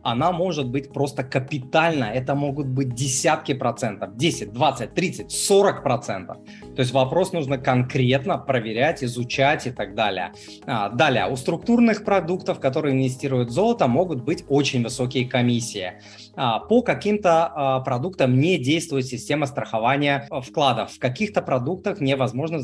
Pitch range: 125-165 Hz